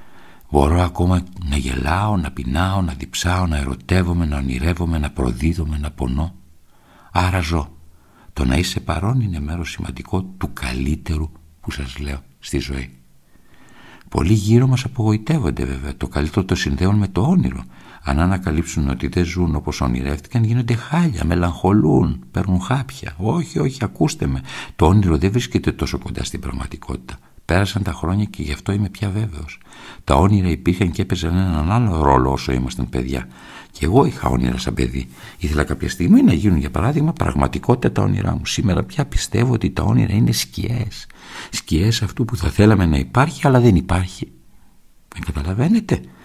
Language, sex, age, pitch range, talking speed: Greek, male, 60-79, 70-100 Hz, 160 wpm